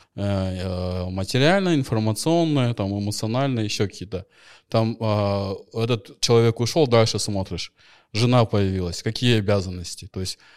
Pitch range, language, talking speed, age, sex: 110-140 Hz, Russian, 110 wpm, 20-39, male